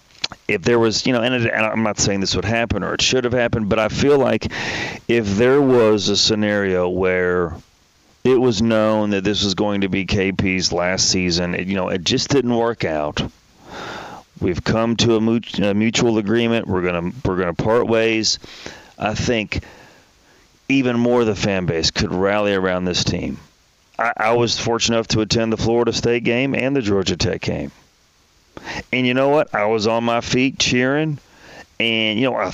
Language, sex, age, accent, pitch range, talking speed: English, male, 40-59, American, 95-115 Hz, 190 wpm